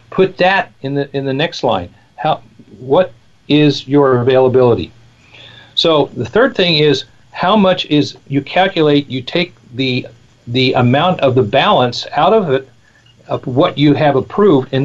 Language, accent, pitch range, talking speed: English, American, 125-160 Hz, 160 wpm